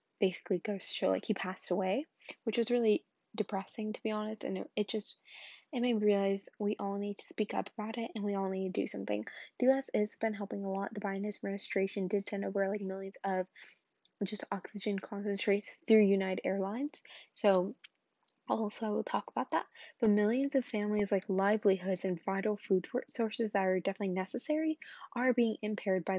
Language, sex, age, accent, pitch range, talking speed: English, female, 10-29, American, 195-230 Hz, 195 wpm